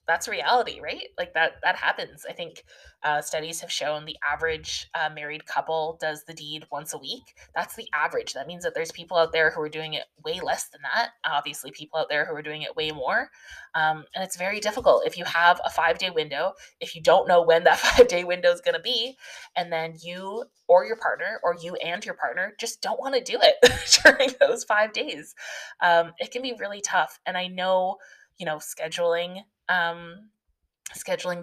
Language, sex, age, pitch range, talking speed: English, female, 20-39, 155-215 Hz, 215 wpm